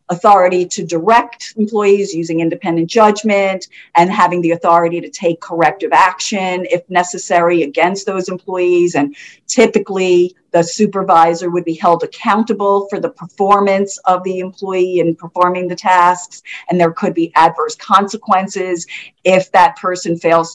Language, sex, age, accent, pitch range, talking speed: English, female, 50-69, American, 170-200 Hz, 140 wpm